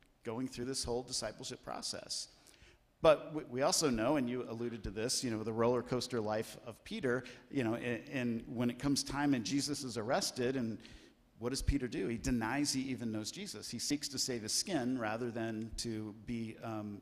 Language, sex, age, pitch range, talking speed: English, male, 50-69, 110-130 Hz, 200 wpm